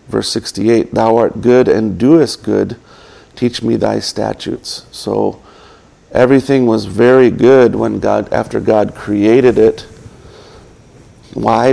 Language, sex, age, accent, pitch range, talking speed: English, male, 50-69, American, 105-120 Hz, 125 wpm